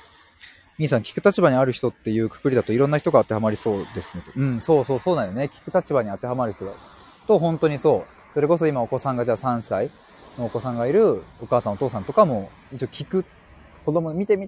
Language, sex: Japanese, male